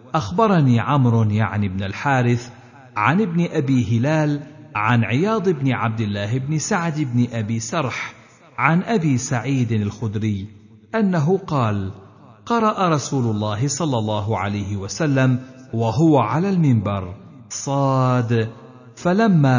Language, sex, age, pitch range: Arabic, male, 50-69, 110-150 Hz